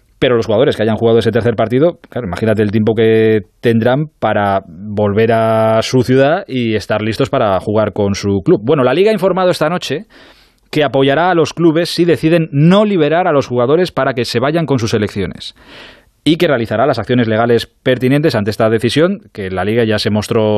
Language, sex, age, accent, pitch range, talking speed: Spanish, male, 20-39, Spanish, 110-155 Hz, 205 wpm